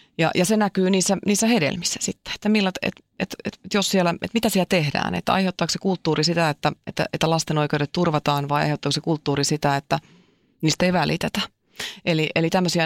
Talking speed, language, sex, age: 200 wpm, Finnish, female, 30-49